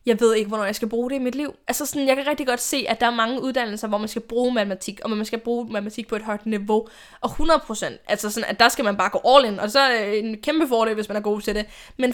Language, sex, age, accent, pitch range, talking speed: Danish, female, 10-29, native, 220-275 Hz, 310 wpm